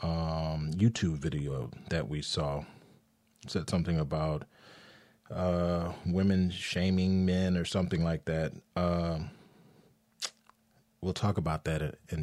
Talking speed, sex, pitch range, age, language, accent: 115 wpm, male, 80-110 Hz, 30-49, English, American